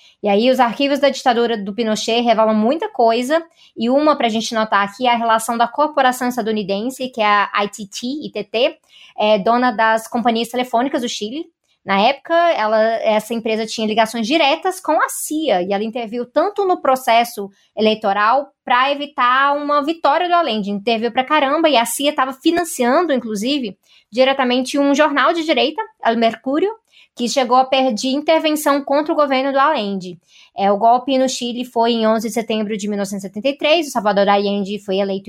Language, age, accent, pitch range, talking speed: Portuguese, 20-39, Brazilian, 220-285 Hz, 175 wpm